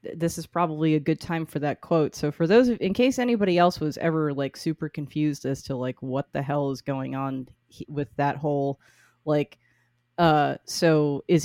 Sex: female